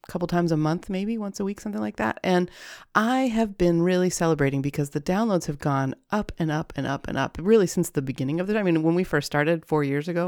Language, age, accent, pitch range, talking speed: English, 30-49, American, 145-195 Hz, 255 wpm